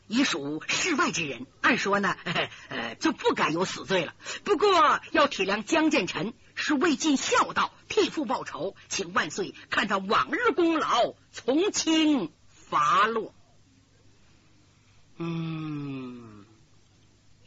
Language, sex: Chinese, female